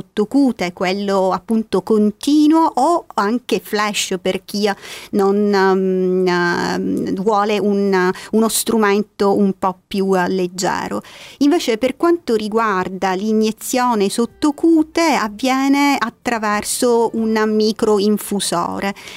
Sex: female